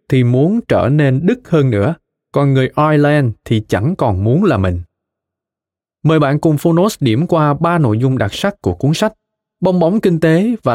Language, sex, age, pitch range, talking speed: Vietnamese, male, 20-39, 120-160 Hz, 195 wpm